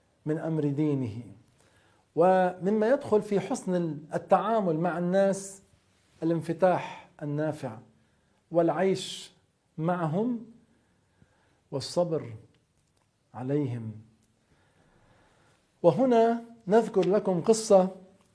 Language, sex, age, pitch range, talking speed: Arabic, male, 50-69, 155-215 Hz, 65 wpm